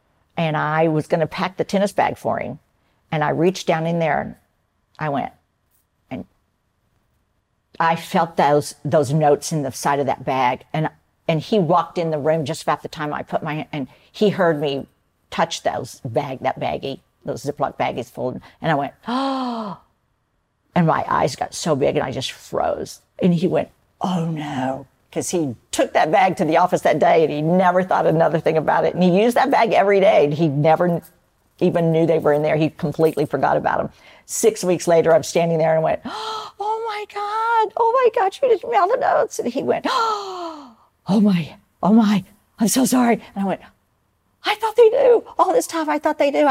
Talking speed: 210 wpm